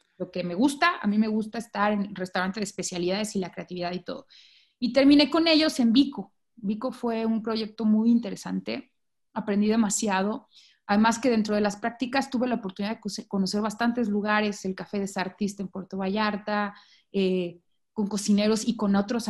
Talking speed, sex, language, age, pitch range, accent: 180 wpm, female, Spanish, 30-49, 195-240 Hz, Mexican